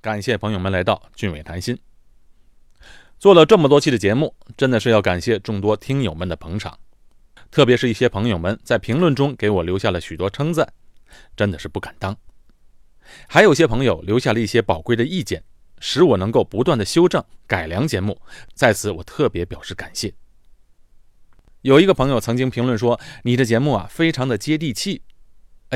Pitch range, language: 100-135 Hz, Chinese